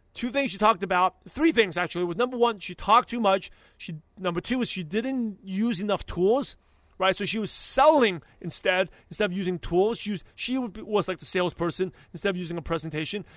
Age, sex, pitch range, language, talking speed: 30-49, male, 170-215 Hz, English, 220 wpm